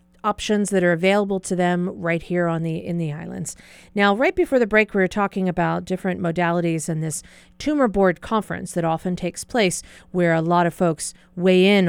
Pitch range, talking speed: 170-225 Hz, 200 wpm